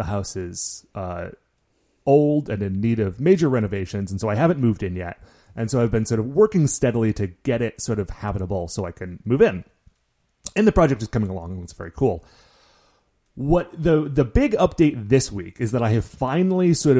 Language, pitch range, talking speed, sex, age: English, 100-135 Hz, 210 wpm, male, 30-49